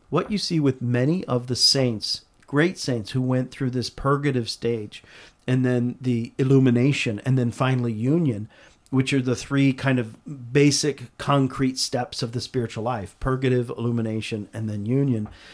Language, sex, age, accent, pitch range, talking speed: English, male, 50-69, American, 125-160 Hz, 160 wpm